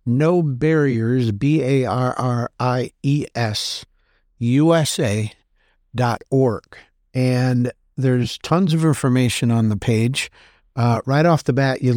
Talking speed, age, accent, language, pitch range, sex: 130 wpm, 60-79, American, English, 120-145 Hz, male